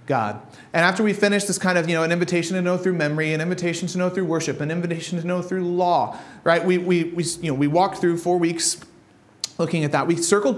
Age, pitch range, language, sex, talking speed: 30-49, 170-220 Hz, English, male, 250 wpm